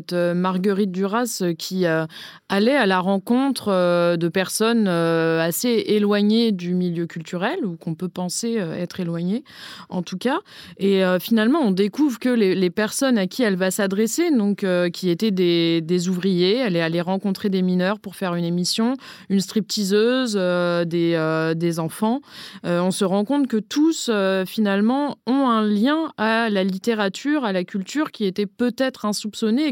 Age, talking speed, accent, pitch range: 20-39, 175 wpm, French, 185-230 Hz